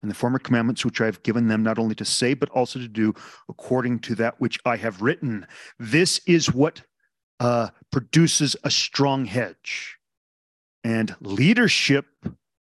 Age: 40-59